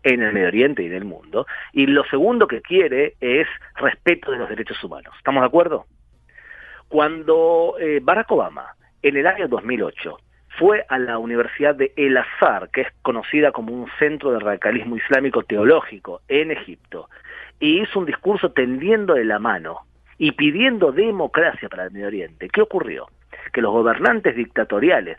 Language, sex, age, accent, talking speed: Spanish, male, 40-59, Argentinian, 165 wpm